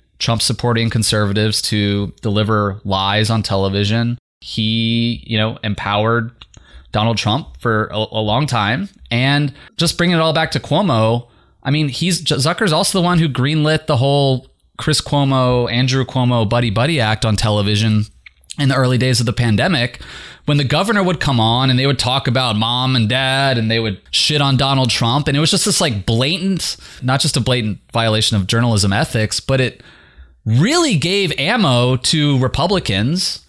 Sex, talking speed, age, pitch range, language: male, 170 wpm, 20-39, 110-150 Hz, English